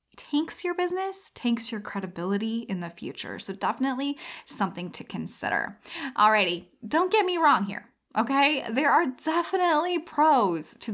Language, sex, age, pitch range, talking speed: English, female, 10-29, 195-265 Hz, 145 wpm